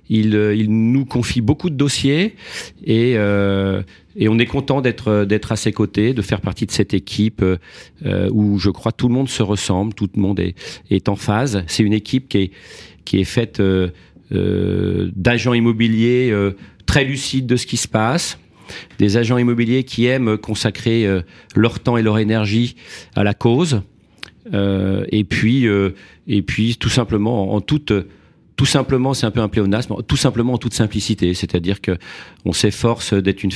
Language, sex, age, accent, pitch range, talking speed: French, male, 40-59, French, 95-115 Hz, 175 wpm